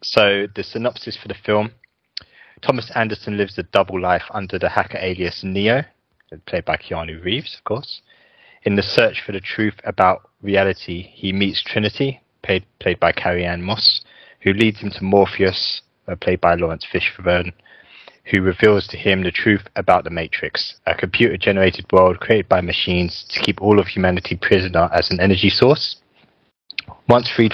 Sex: male